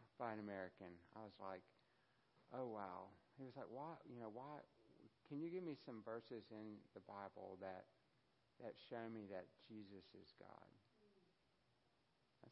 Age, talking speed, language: 60-79, 155 wpm, English